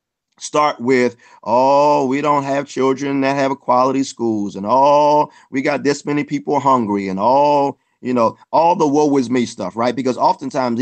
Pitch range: 120-150 Hz